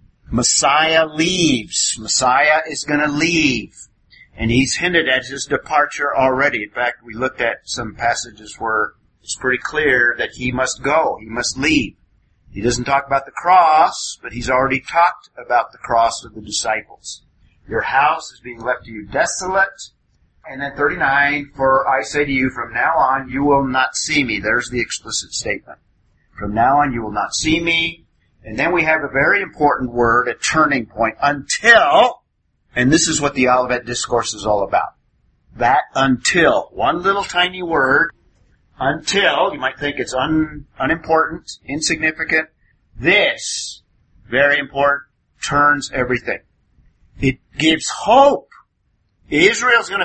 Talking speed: 155 wpm